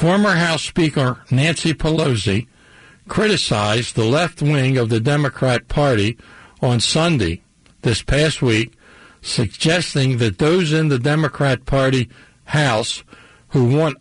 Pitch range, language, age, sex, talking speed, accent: 120-160 Hz, English, 60-79, male, 120 wpm, American